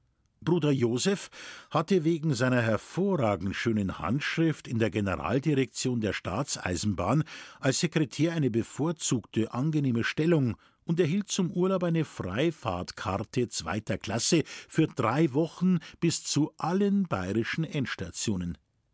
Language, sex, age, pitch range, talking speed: German, male, 50-69, 110-170 Hz, 110 wpm